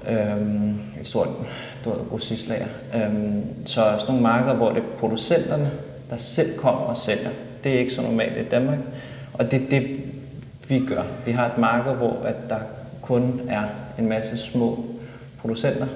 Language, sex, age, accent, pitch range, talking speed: Danish, male, 30-49, native, 110-130 Hz, 190 wpm